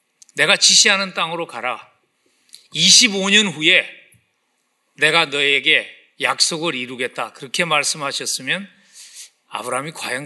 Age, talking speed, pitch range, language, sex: 40-59, 80 wpm, 145-195 Hz, English, male